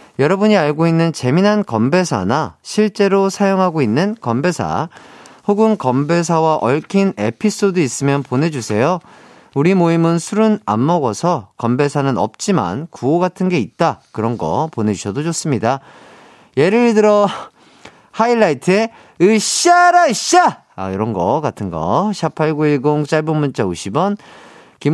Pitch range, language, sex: 135-210 Hz, Korean, male